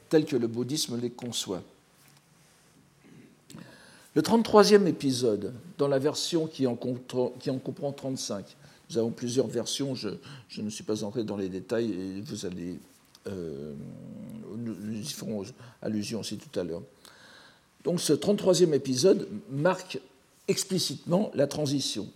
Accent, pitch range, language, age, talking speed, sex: French, 115-160 Hz, French, 60-79, 135 wpm, male